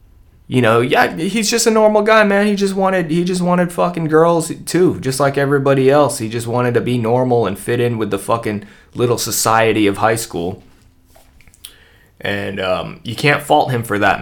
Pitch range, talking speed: 100-145 Hz, 200 wpm